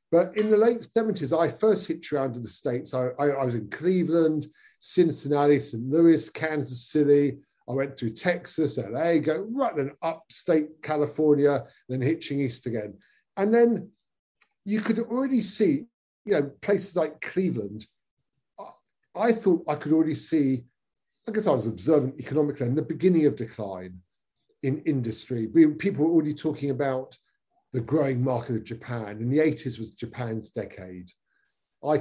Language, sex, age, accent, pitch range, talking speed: English, male, 50-69, British, 120-160 Hz, 160 wpm